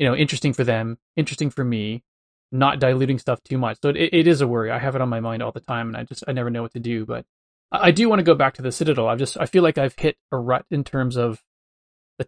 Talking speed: 295 wpm